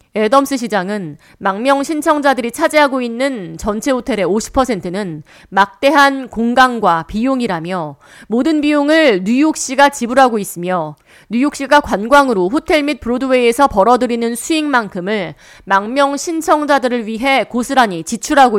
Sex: female